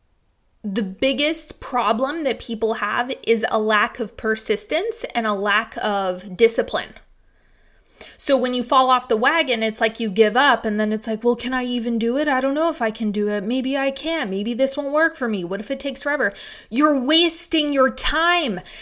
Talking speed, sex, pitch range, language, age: 205 wpm, female, 220-280 Hz, English, 20-39